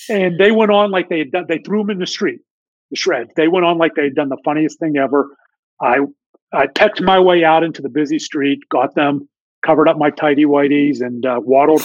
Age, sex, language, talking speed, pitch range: 40-59, male, English, 240 wpm, 140-195 Hz